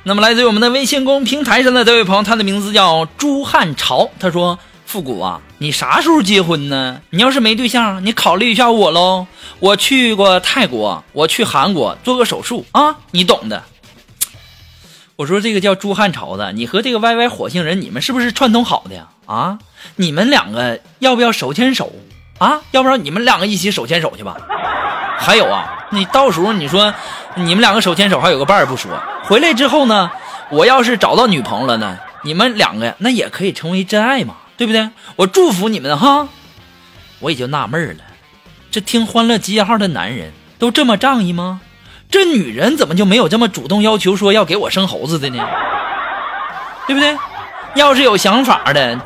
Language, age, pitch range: Chinese, 20-39, 185-255 Hz